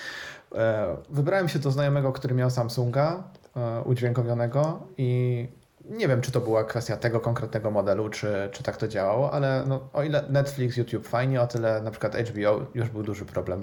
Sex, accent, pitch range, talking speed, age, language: male, native, 110-140 Hz, 165 wpm, 20-39, Polish